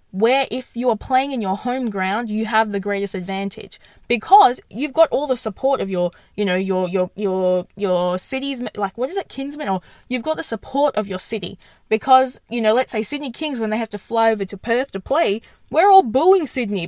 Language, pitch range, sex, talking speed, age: English, 205-300 Hz, female, 225 wpm, 10-29